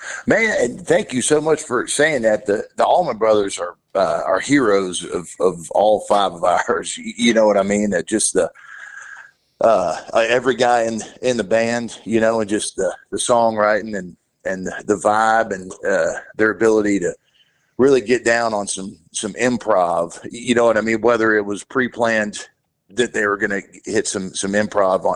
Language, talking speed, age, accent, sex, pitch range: English, 190 wpm, 50-69, American, male, 100-120 Hz